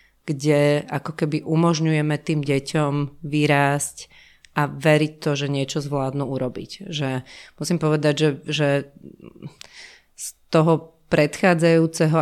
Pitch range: 145-160 Hz